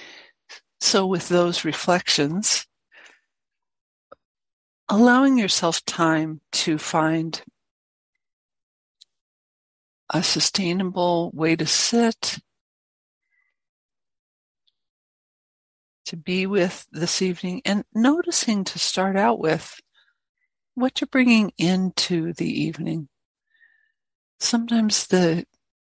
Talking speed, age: 75 wpm, 60-79